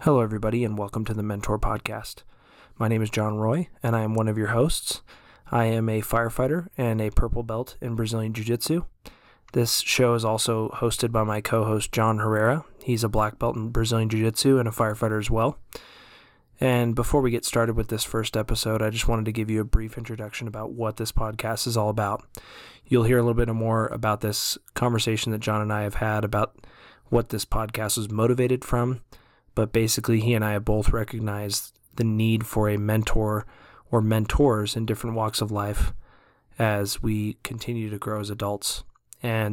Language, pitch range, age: English, 105-115 Hz, 20-39